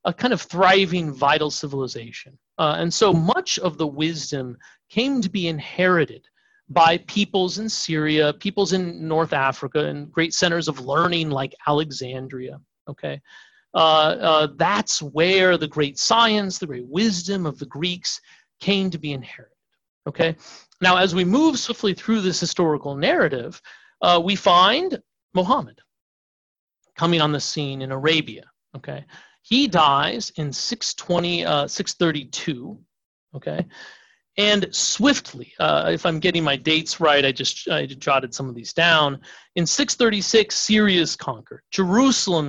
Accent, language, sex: American, English, male